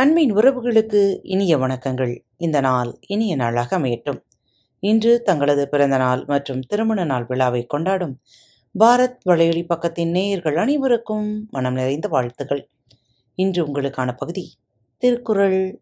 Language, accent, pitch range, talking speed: Tamil, native, 130-190 Hz, 110 wpm